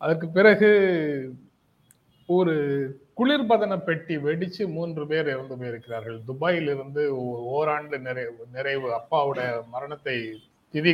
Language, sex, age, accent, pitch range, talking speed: Tamil, male, 30-49, native, 125-165 Hz, 90 wpm